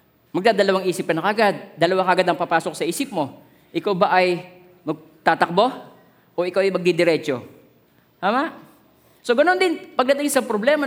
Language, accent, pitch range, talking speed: Filipino, native, 170-255 Hz, 145 wpm